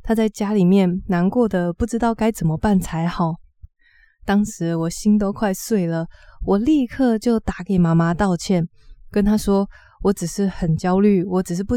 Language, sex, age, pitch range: Chinese, female, 20-39, 170-215 Hz